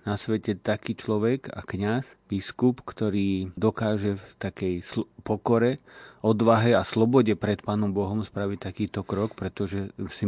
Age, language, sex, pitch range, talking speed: 40-59, Slovak, male, 95-110 Hz, 140 wpm